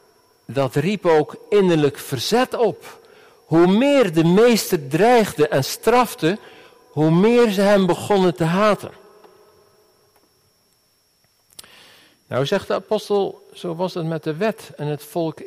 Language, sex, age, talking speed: Dutch, male, 50-69, 130 wpm